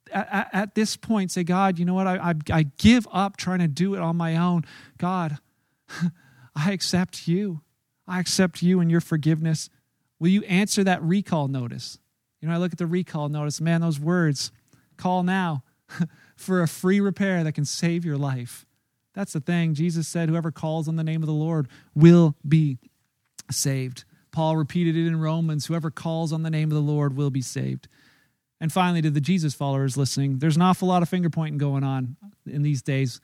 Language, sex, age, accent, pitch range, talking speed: English, male, 40-59, American, 145-175 Hz, 195 wpm